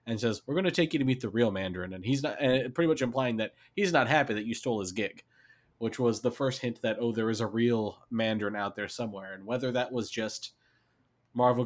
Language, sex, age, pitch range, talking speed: English, male, 20-39, 110-130 Hz, 250 wpm